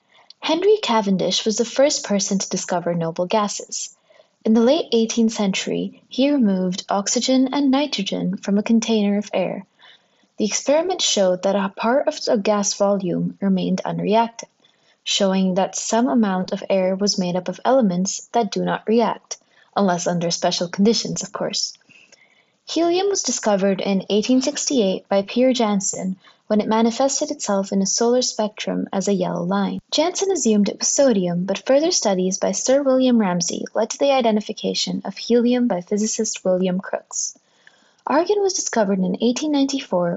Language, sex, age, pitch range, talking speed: English, female, 20-39, 195-255 Hz, 155 wpm